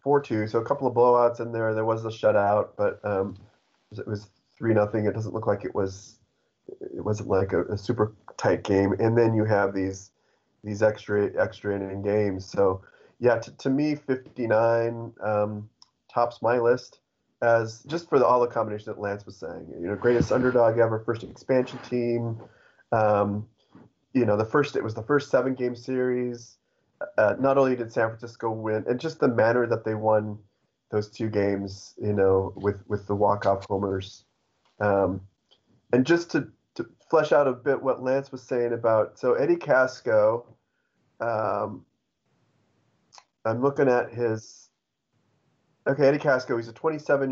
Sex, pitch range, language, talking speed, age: male, 105-125 Hz, English, 175 wpm, 30-49